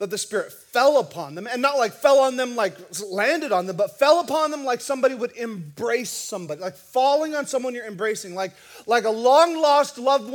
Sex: male